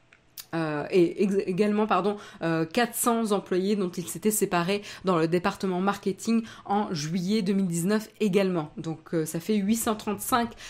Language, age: French, 20-39